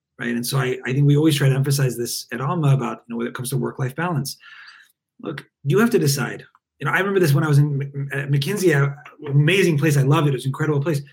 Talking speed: 270 wpm